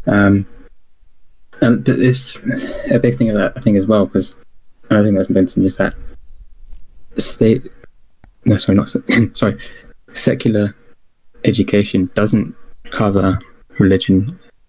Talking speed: 125 wpm